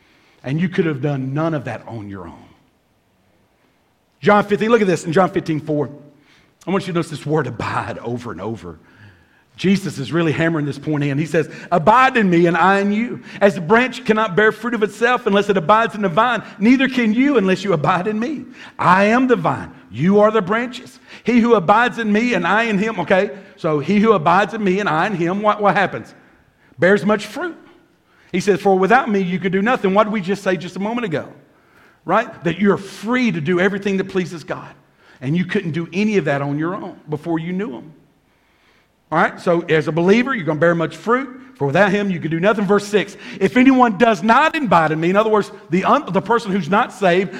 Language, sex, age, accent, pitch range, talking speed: English, male, 50-69, American, 165-220 Hz, 230 wpm